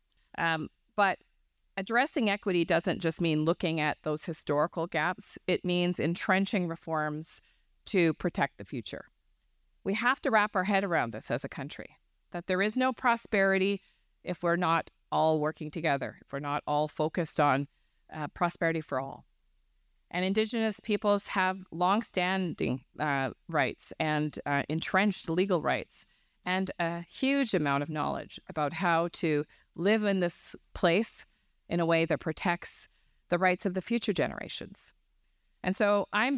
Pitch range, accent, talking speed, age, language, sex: 155-195 Hz, American, 150 wpm, 30-49, English, female